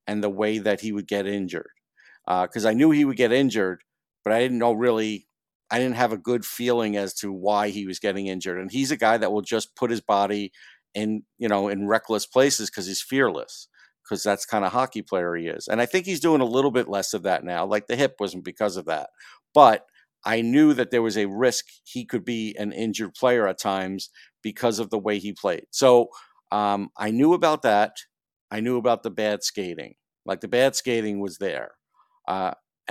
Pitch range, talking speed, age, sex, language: 105-130 Hz, 220 wpm, 50-69, male, English